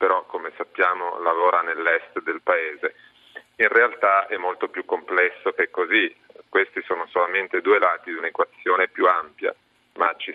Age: 30-49